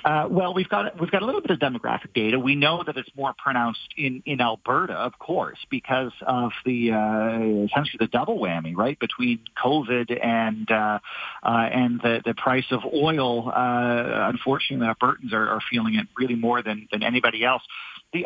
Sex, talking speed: male, 185 wpm